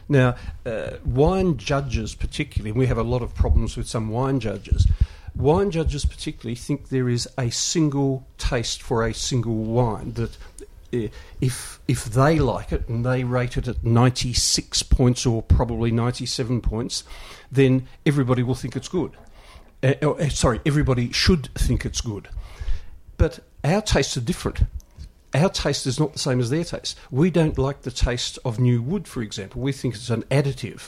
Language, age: English, 50-69